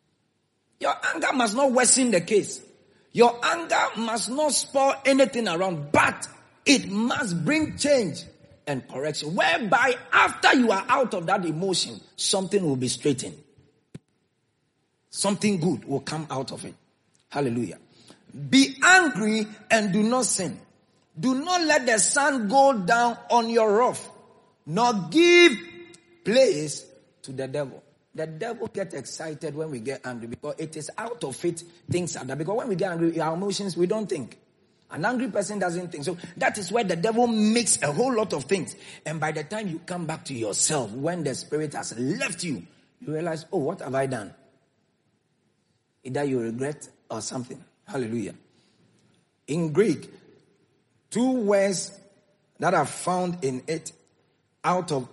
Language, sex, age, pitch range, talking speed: English, male, 40-59, 150-230 Hz, 160 wpm